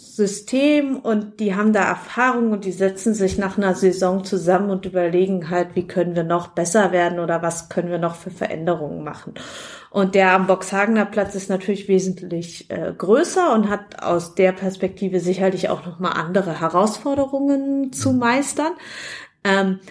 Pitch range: 175-215 Hz